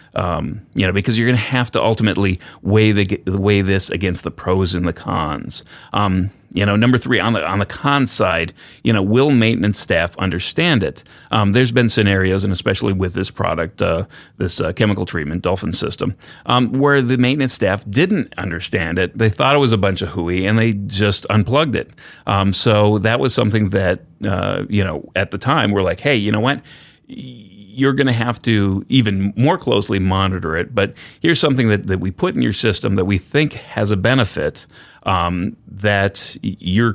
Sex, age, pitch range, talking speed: male, 30-49, 95-115 Hz, 200 wpm